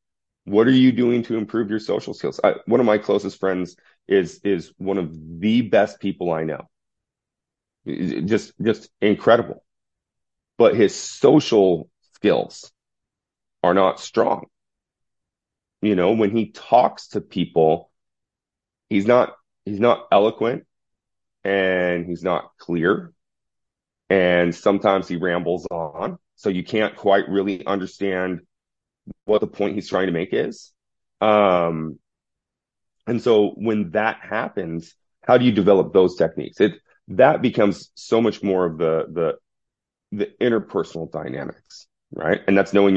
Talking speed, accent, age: 135 wpm, American, 30-49